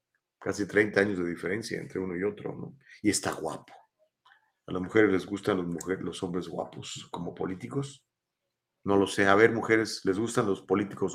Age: 40-59